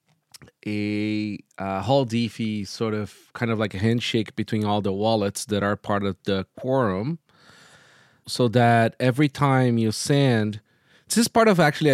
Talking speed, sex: 160 wpm, male